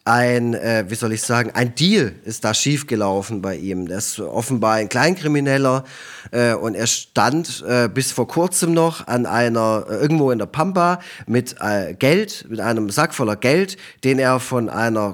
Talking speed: 180 wpm